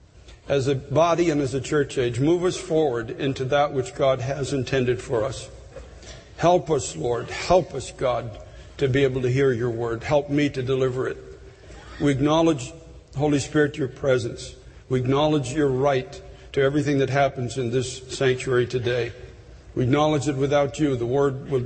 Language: English